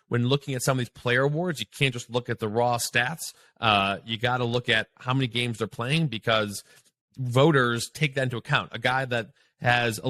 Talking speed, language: 225 wpm, English